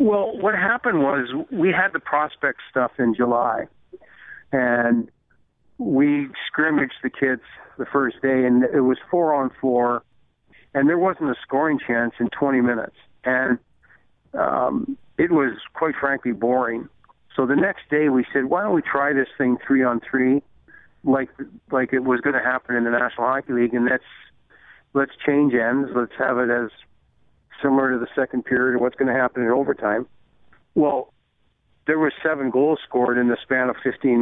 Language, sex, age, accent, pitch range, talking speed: English, male, 60-79, American, 125-140 Hz, 175 wpm